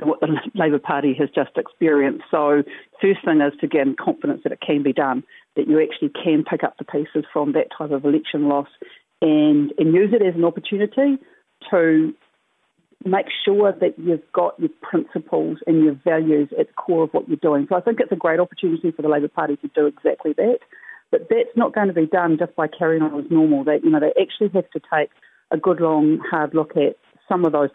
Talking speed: 225 wpm